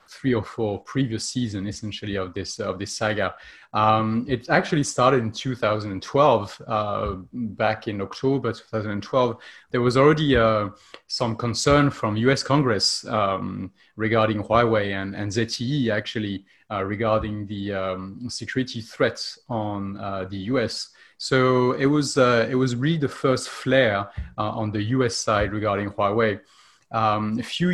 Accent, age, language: French, 30-49, Chinese